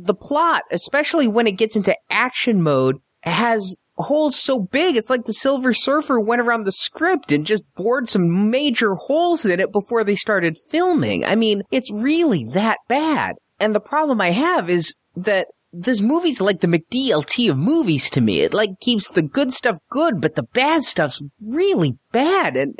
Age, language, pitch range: 30-49, English, 170-255 Hz